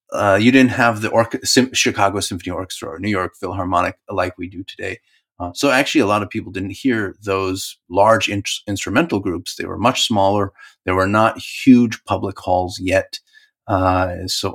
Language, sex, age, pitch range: English, male, 30-49, 95-115 Hz